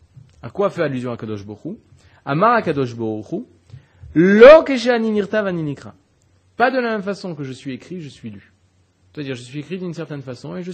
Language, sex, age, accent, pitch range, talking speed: French, male, 30-49, French, 105-180 Hz, 205 wpm